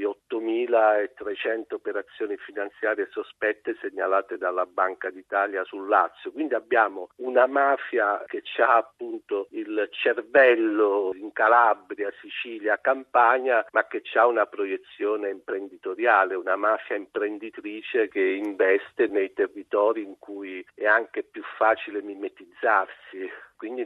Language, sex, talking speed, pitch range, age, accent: Italian, male, 110 wpm, 330-420 Hz, 50-69, native